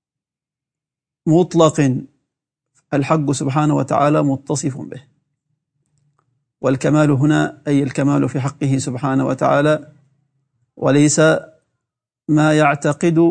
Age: 50-69